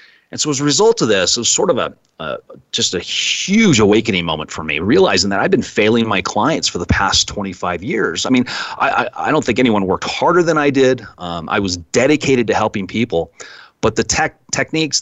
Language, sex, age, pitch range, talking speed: English, male, 30-49, 95-135 Hz, 230 wpm